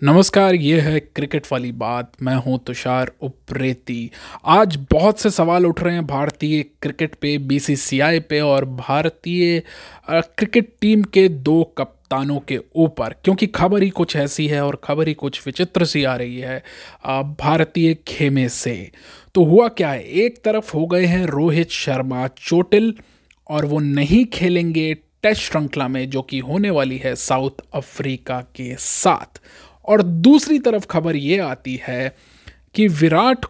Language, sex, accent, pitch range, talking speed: Hindi, male, native, 135-180 Hz, 155 wpm